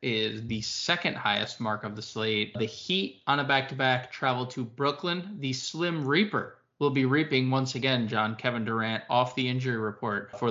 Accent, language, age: American, English, 20-39